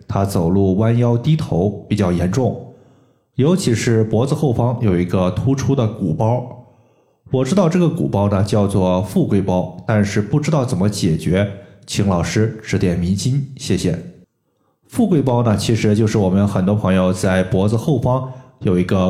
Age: 20-39